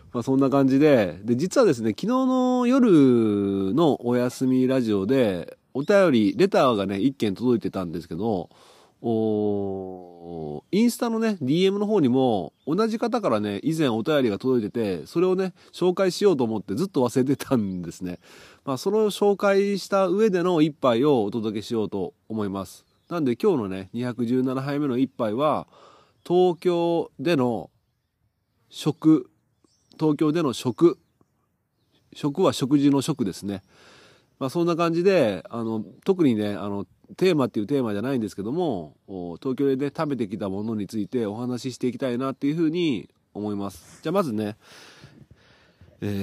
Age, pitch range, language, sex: 30-49, 105-155 Hz, Japanese, male